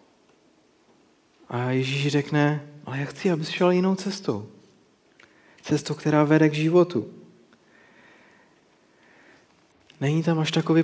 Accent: native